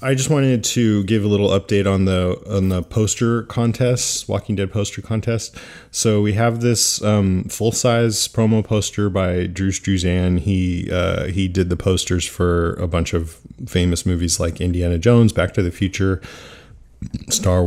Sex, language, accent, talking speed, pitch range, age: male, English, American, 165 wpm, 90-105 Hz, 20-39